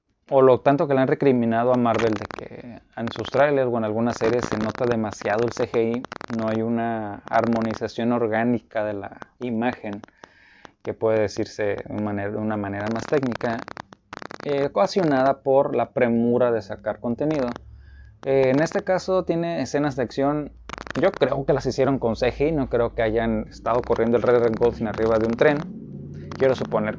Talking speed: 175 wpm